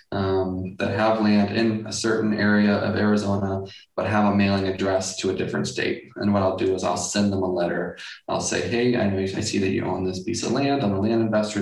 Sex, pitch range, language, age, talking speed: male, 95-110 Hz, English, 20-39, 250 wpm